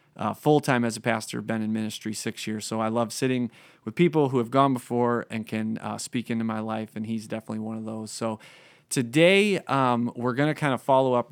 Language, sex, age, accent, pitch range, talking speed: English, male, 30-49, American, 110-130 Hz, 230 wpm